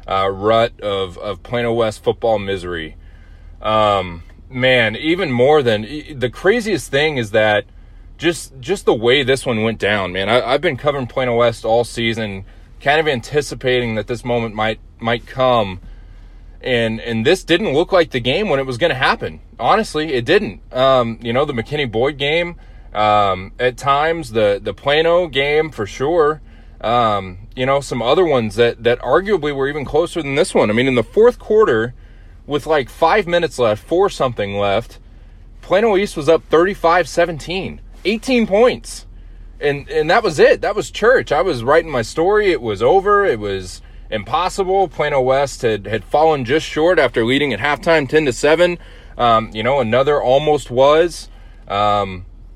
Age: 20-39